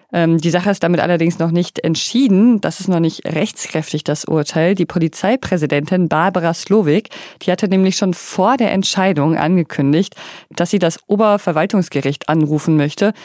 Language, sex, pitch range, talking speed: German, female, 160-190 Hz, 150 wpm